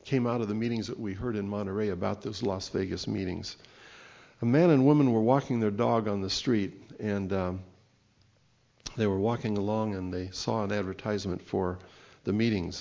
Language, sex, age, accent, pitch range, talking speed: English, male, 60-79, American, 100-125 Hz, 185 wpm